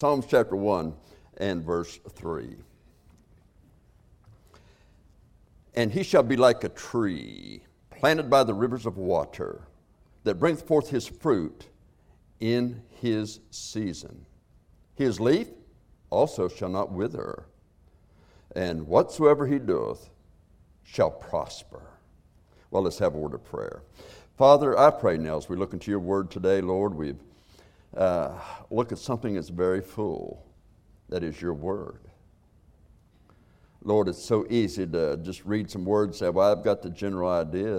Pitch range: 85-105 Hz